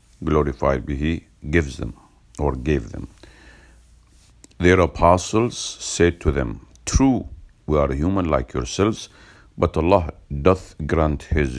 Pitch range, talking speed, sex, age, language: 70-90 Hz, 125 wpm, male, 50-69, English